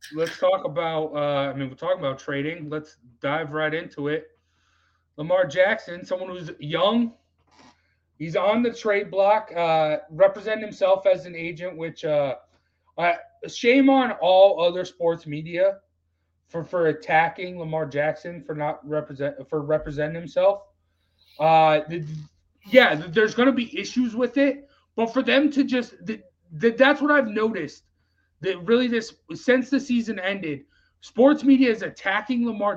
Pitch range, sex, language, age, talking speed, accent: 155-235 Hz, male, English, 30-49, 155 wpm, American